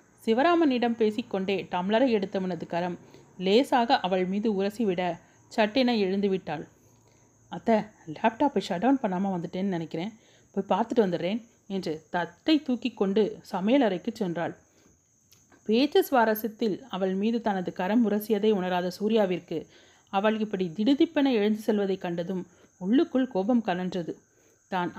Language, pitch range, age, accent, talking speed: Tamil, 180-230 Hz, 30-49, native, 110 wpm